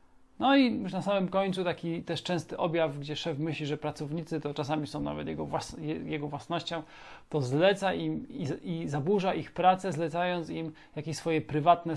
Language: Polish